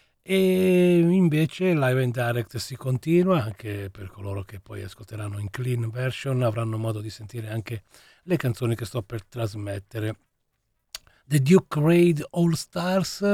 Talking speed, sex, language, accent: 145 wpm, male, English, Italian